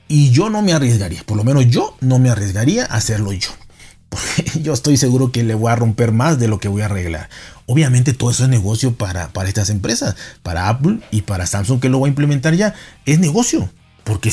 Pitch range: 110-130 Hz